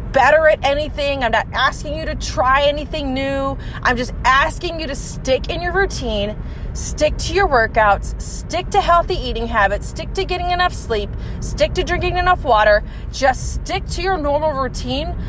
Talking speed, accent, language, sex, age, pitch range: 175 wpm, American, English, female, 30-49, 240-315 Hz